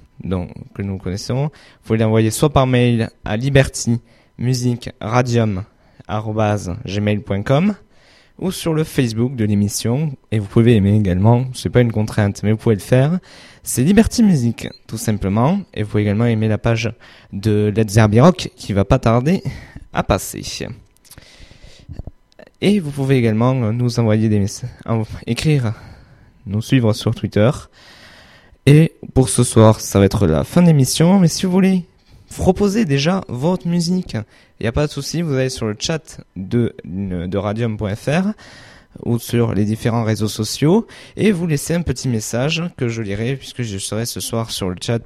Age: 20-39